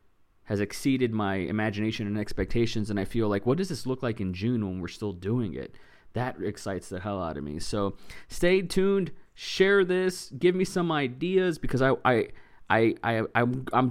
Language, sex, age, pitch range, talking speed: English, male, 20-39, 105-125 Hz, 190 wpm